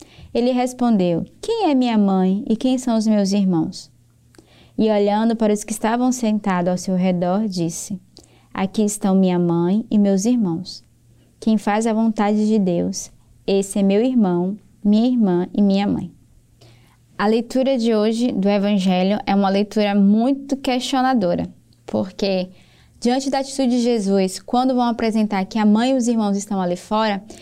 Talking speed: 160 wpm